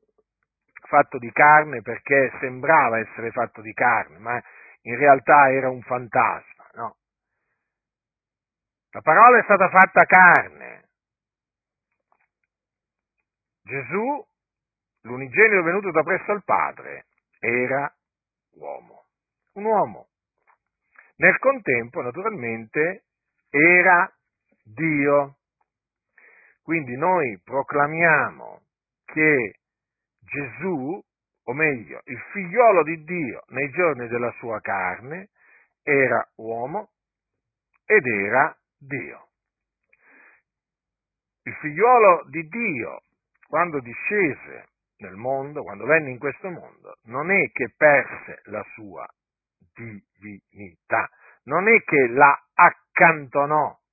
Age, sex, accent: 50-69, male, native